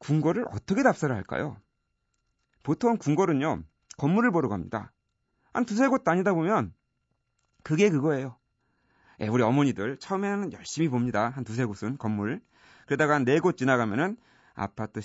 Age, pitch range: 40-59, 110-170 Hz